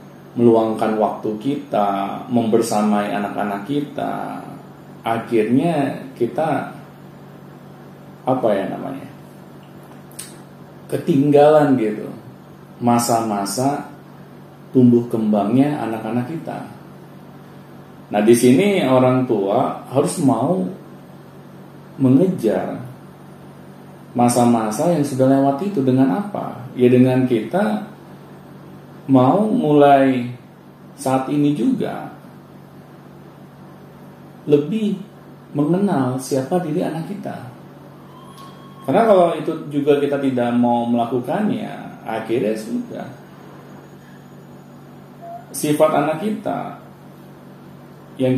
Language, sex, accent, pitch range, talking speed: Indonesian, male, native, 120-150 Hz, 75 wpm